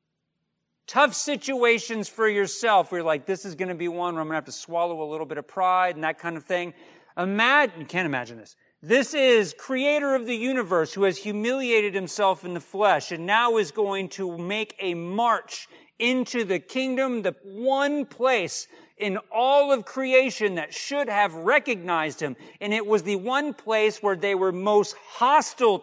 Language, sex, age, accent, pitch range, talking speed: English, male, 50-69, American, 185-245 Hz, 190 wpm